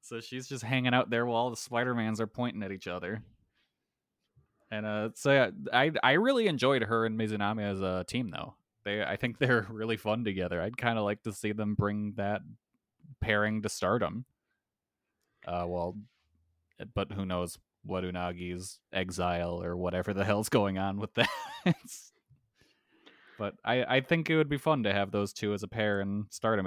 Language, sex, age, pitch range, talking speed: English, male, 20-39, 100-125 Hz, 185 wpm